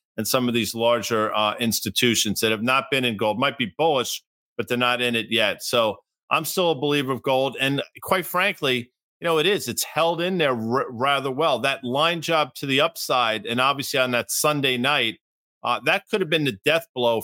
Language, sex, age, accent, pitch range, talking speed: English, male, 50-69, American, 120-150 Hz, 215 wpm